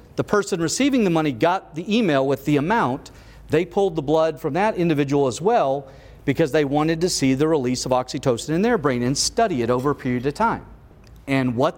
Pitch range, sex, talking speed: 150-220 Hz, male, 215 wpm